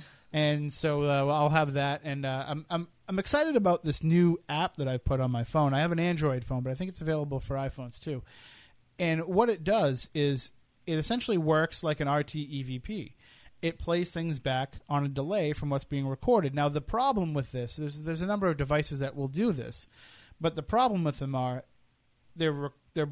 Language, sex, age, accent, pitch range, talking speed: English, male, 30-49, American, 135-165 Hz, 210 wpm